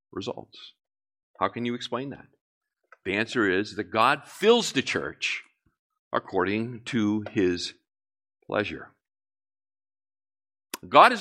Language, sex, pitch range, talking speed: English, male, 105-175 Hz, 105 wpm